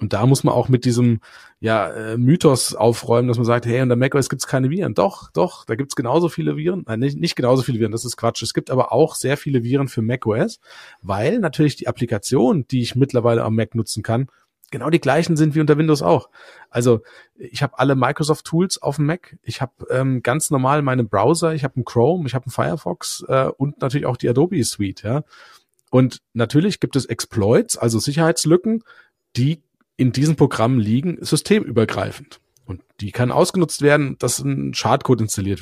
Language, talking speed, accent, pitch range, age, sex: German, 200 wpm, German, 115-150 Hz, 40-59, male